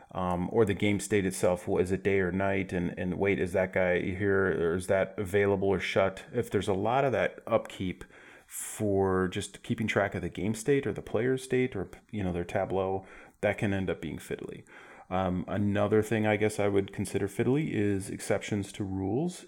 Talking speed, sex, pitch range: 210 wpm, male, 90-105 Hz